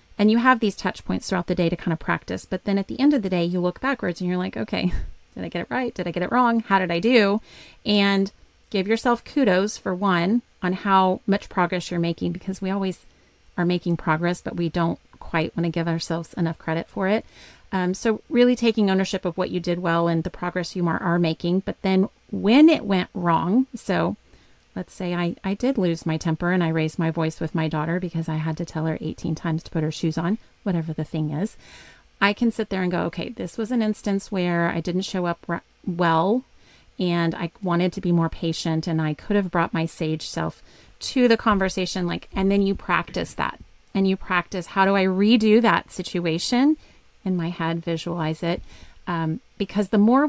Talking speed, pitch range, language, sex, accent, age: 225 wpm, 170-205 Hz, English, female, American, 30-49